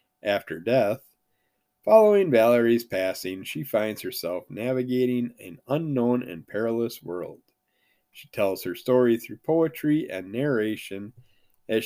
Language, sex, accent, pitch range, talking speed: English, male, American, 105-135 Hz, 115 wpm